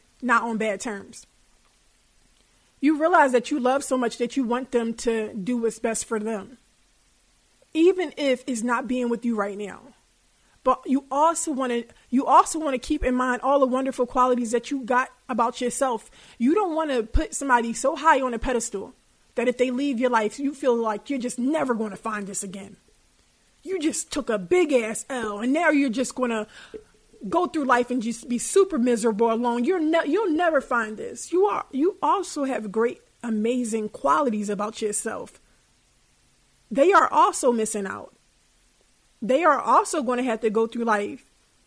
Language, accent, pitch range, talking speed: English, American, 225-280 Hz, 190 wpm